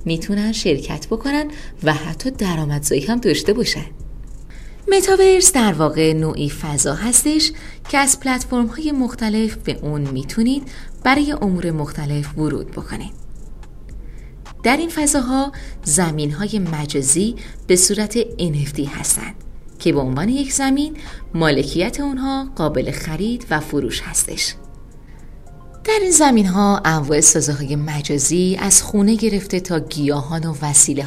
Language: Persian